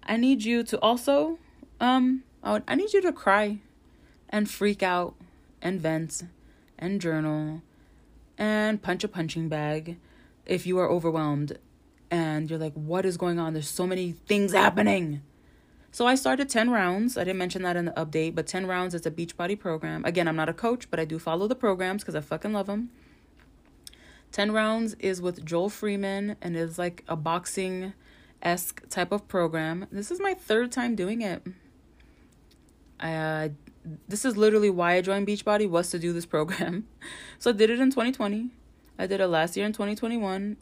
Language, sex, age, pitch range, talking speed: English, female, 20-39, 165-215 Hz, 185 wpm